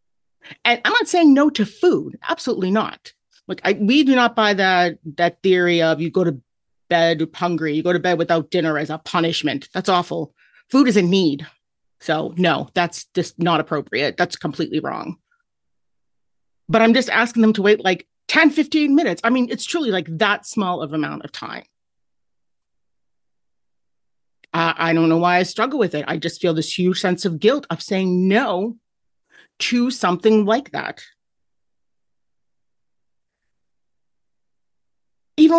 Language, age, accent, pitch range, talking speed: English, 40-59, American, 165-225 Hz, 160 wpm